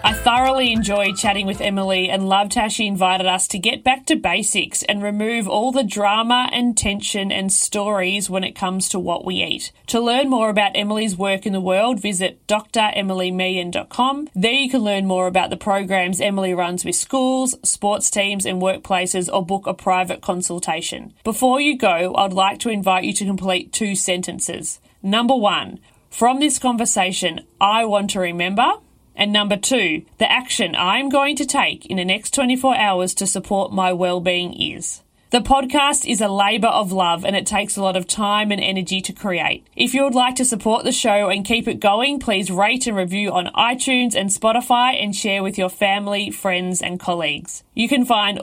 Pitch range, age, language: 190-230 Hz, 30-49, English